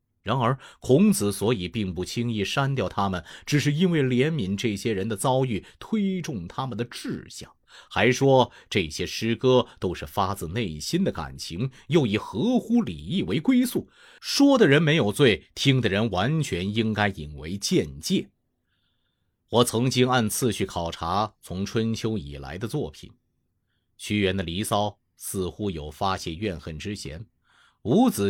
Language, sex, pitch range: Chinese, male, 95-135 Hz